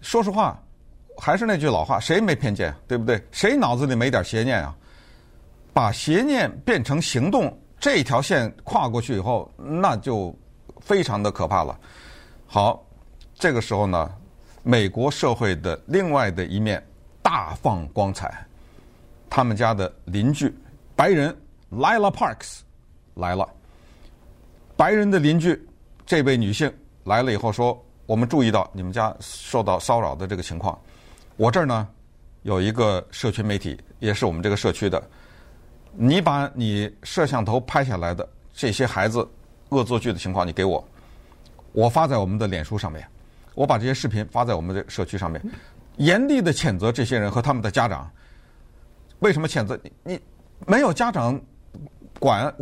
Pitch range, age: 95-135 Hz, 50-69